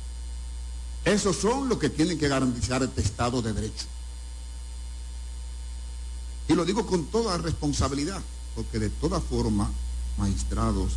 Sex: male